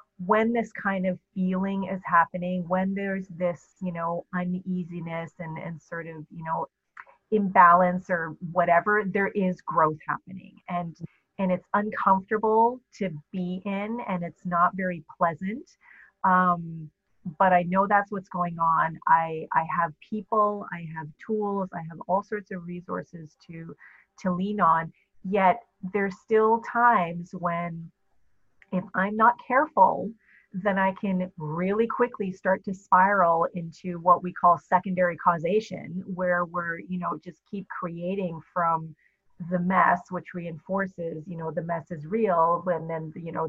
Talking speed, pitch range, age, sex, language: 150 wpm, 165-195 Hz, 30-49, female, English